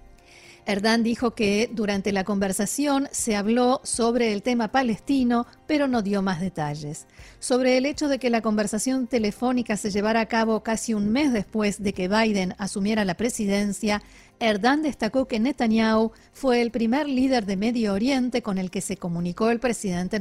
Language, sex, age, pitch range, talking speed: Spanish, female, 40-59, 205-250 Hz, 170 wpm